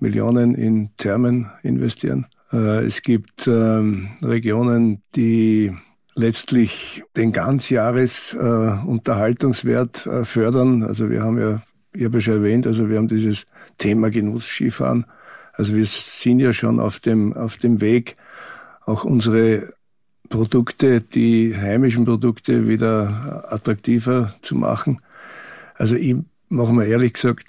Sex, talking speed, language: male, 115 wpm, German